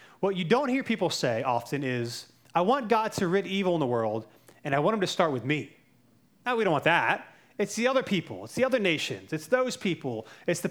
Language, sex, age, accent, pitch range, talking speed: English, male, 30-49, American, 150-215 Hz, 240 wpm